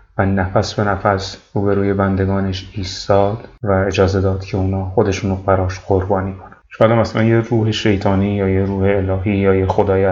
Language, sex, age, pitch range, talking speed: Persian, male, 30-49, 95-105 Hz, 185 wpm